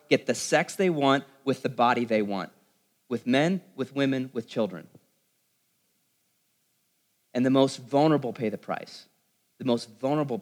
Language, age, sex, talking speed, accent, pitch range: English, 30-49, male, 150 wpm, American, 120-165 Hz